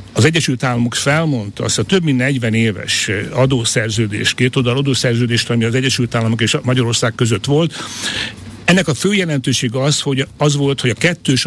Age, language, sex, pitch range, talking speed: 60-79, Hungarian, male, 120-145 Hz, 175 wpm